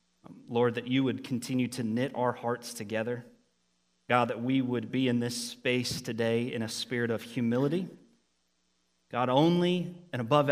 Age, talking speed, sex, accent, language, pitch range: 30-49, 160 wpm, male, American, English, 105-135 Hz